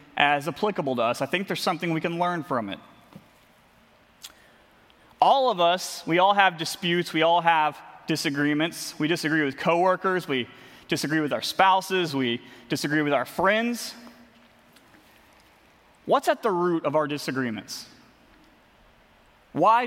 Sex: male